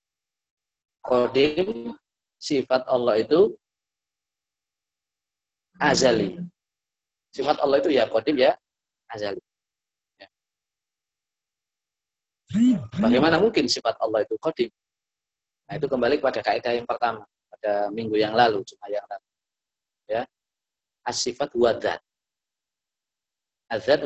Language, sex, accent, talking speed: Indonesian, male, native, 95 wpm